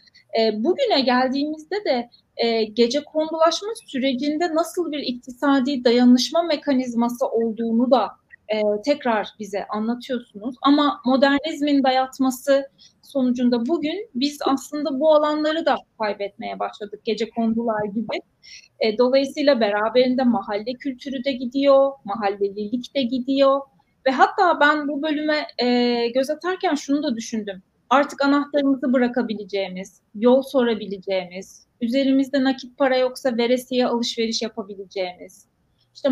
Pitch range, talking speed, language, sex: 235-285 Hz, 105 wpm, Turkish, female